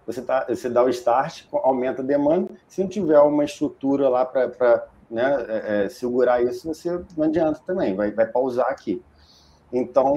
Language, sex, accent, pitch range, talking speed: Portuguese, male, Brazilian, 125-165 Hz, 175 wpm